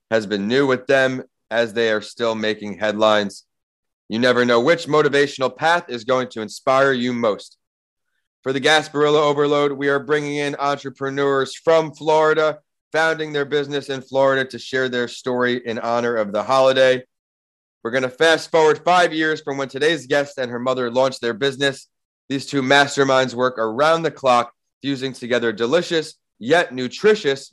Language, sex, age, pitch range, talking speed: English, male, 30-49, 120-150 Hz, 170 wpm